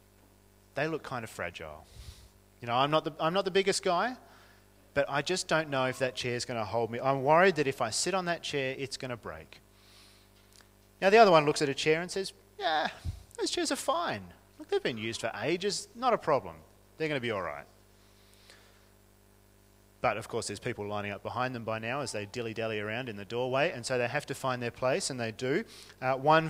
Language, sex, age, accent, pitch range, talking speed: English, male, 30-49, Australian, 105-160 Hz, 230 wpm